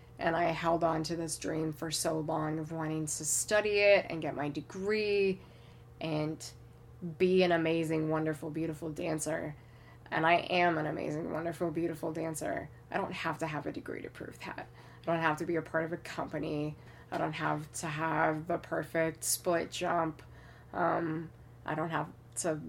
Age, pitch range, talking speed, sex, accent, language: 20-39, 155-170 Hz, 180 wpm, female, American, English